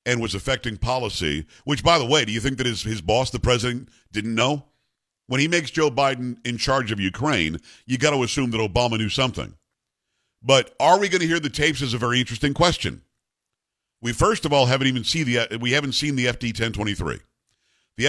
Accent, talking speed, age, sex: American, 220 wpm, 50-69, male